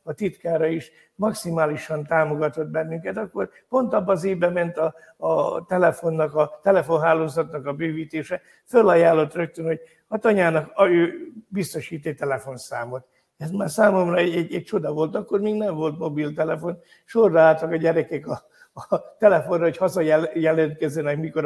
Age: 60-79